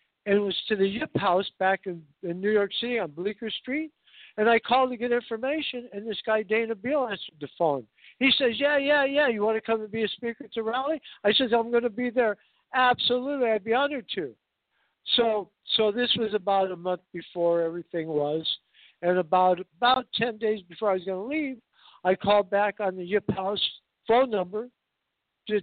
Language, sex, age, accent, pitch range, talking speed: English, male, 60-79, American, 190-240 Hz, 210 wpm